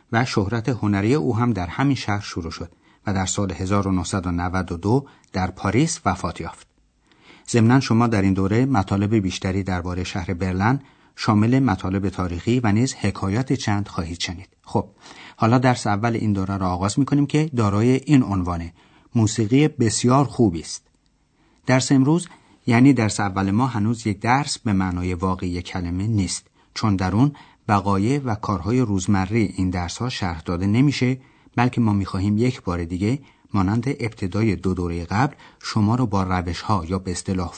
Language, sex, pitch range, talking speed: Persian, male, 95-125 Hz, 155 wpm